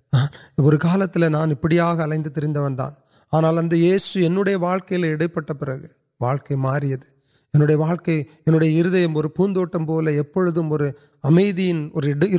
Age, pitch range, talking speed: 30-49, 140-170 Hz, 50 wpm